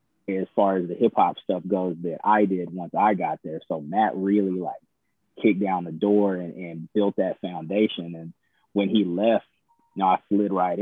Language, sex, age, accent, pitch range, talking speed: English, male, 20-39, American, 95-105 Hz, 200 wpm